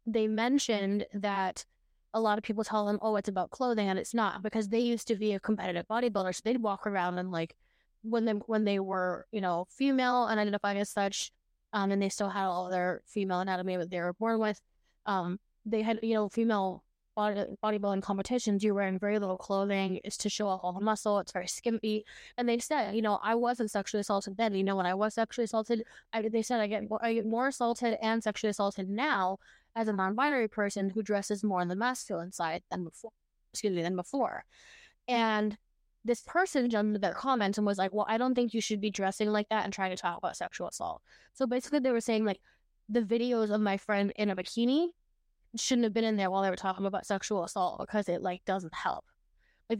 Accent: American